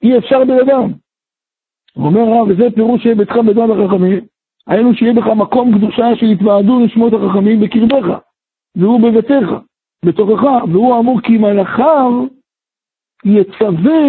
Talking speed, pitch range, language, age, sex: 115 wpm, 225-265 Hz, Hebrew, 60-79, male